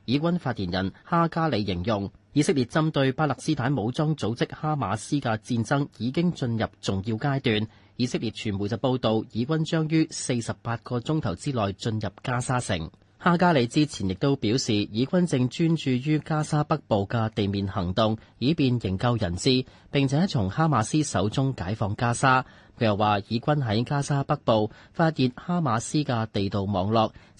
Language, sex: Chinese, male